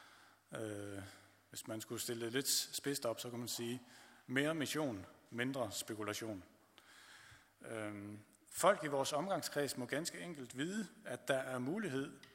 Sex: male